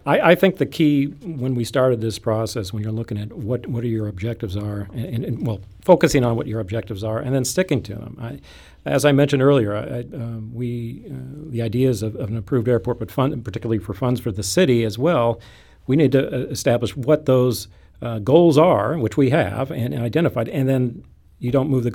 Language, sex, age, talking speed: English, male, 50-69, 220 wpm